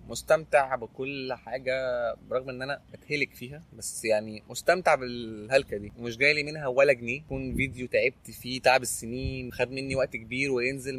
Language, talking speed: Arabic, 165 wpm